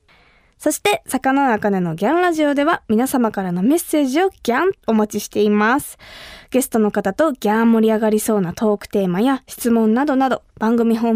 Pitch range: 210-290 Hz